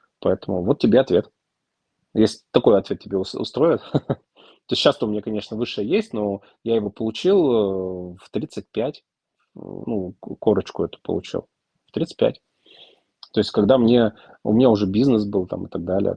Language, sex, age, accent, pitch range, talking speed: Russian, male, 30-49, native, 100-140 Hz, 155 wpm